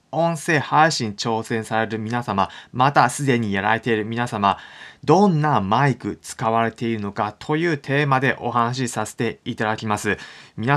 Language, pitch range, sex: Japanese, 110-145 Hz, male